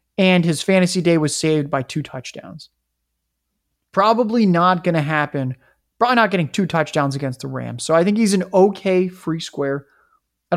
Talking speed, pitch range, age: 175 wpm, 140-185 Hz, 20-39